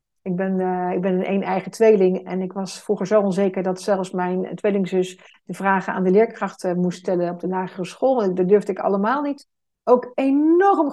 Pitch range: 185-235 Hz